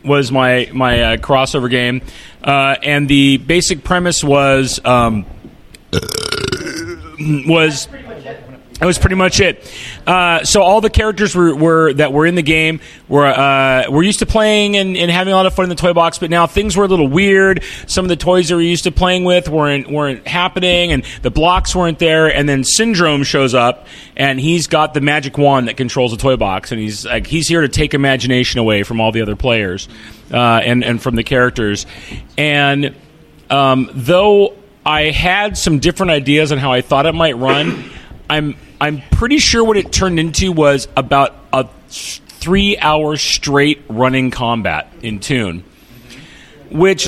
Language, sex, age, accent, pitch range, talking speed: English, male, 30-49, American, 130-175 Hz, 185 wpm